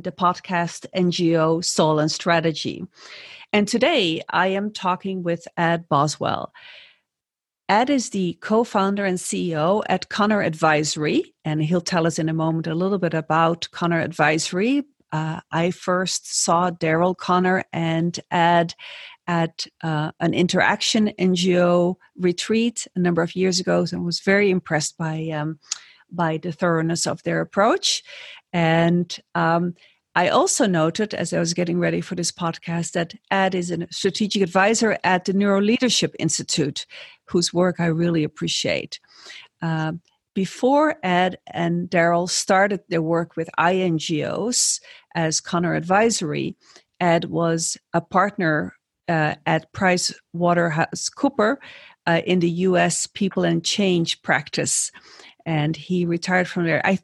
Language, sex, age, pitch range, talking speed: English, female, 50-69, 165-195 Hz, 135 wpm